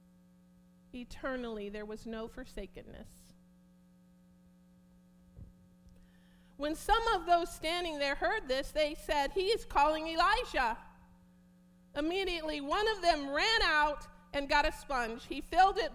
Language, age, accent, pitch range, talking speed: English, 50-69, American, 180-300 Hz, 120 wpm